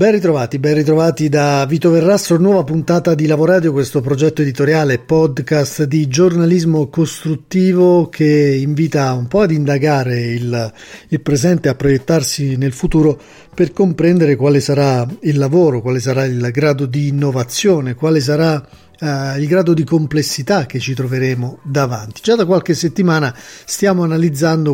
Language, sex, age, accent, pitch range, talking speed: Italian, male, 40-59, native, 135-165 Hz, 150 wpm